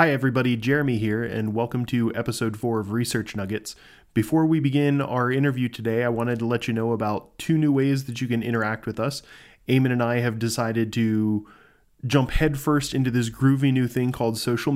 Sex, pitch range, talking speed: male, 115-140 Hz, 200 wpm